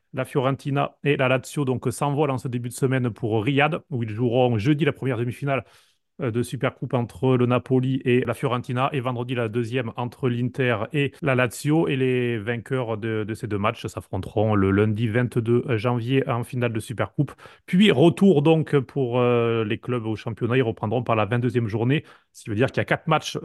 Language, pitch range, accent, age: French, 120-145 Hz, French, 30-49